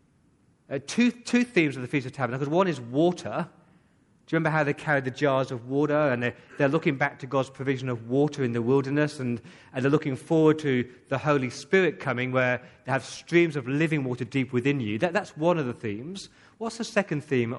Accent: British